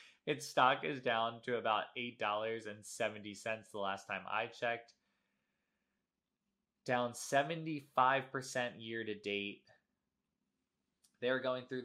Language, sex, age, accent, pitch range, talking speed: English, male, 20-39, American, 100-125 Hz, 100 wpm